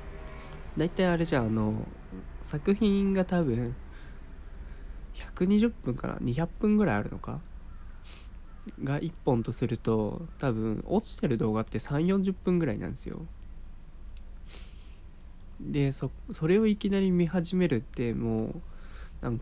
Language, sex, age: Japanese, male, 20-39